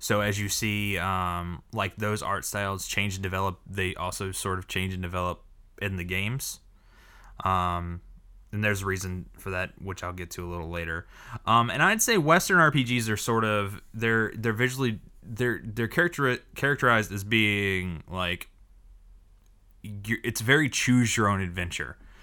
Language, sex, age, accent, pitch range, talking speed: English, male, 20-39, American, 95-115 Hz, 165 wpm